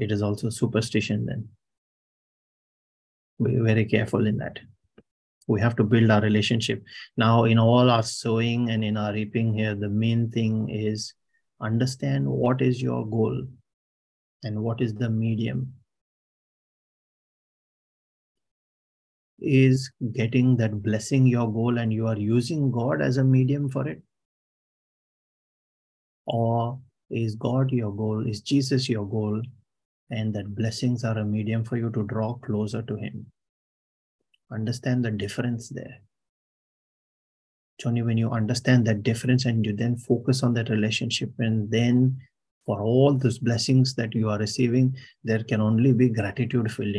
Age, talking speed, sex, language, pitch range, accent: 30-49, 145 wpm, male, English, 110-125 Hz, Indian